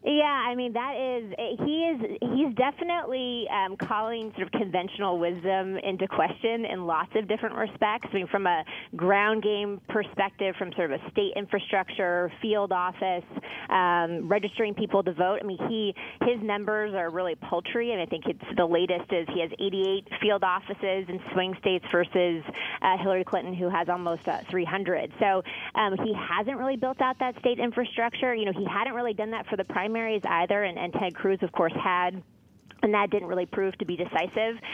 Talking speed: 190 wpm